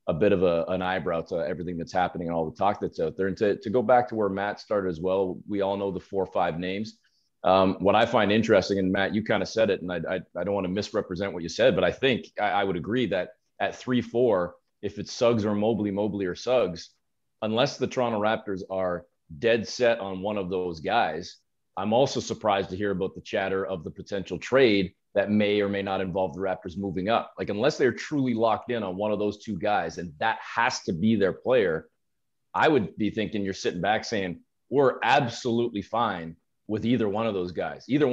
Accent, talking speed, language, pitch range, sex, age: American, 235 wpm, English, 95-115 Hz, male, 30-49